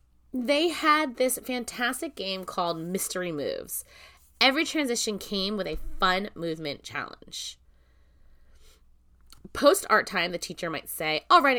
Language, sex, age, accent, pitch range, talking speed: English, female, 20-39, American, 170-265 Hz, 125 wpm